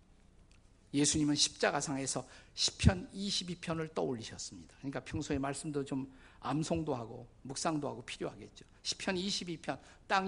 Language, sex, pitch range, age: Korean, male, 120-185 Hz, 50-69